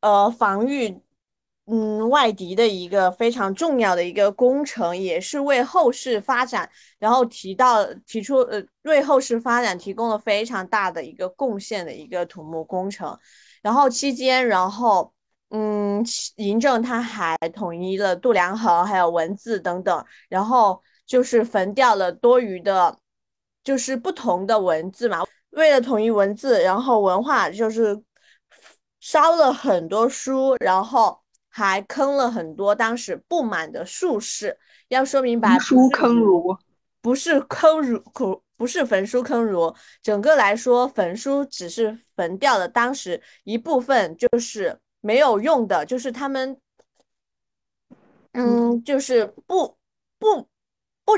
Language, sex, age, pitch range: Chinese, female, 20-39, 200-260 Hz